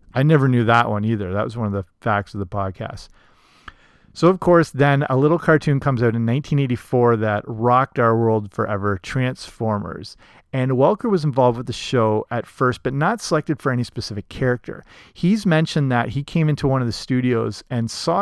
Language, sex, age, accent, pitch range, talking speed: English, male, 40-59, American, 115-145 Hz, 200 wpm